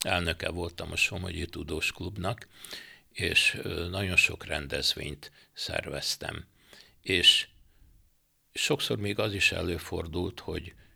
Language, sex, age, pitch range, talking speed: Hungarian, male, 60-79, 80-95 Hz, 100 wpm